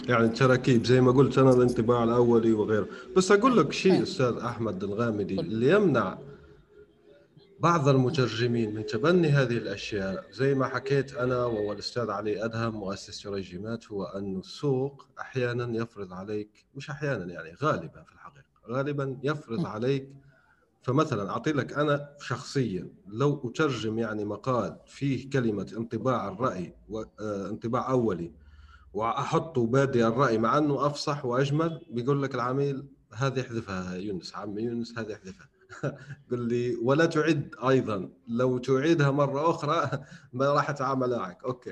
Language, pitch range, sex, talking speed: Arabic, 115-140 Hz, male, 135 wpm